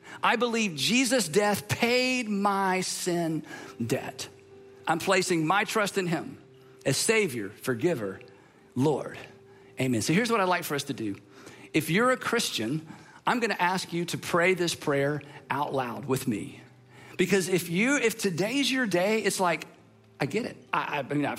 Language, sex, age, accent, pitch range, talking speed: English, male, 50-69, American, 140-215 Hz, 170 wpm